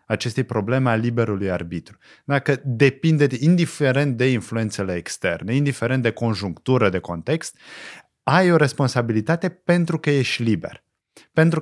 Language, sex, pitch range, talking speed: Romanian, male, 115-155 Hz, 125 wpm